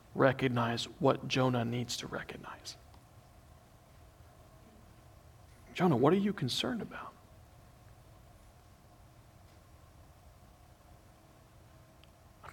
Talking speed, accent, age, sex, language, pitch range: 60 wpm, American, 40-59, male, English, 105-165 Hz